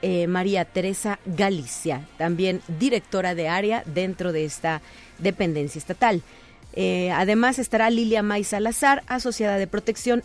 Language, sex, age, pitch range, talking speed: Spanish, female, 40-59, 180-250 Hz, 130 wpm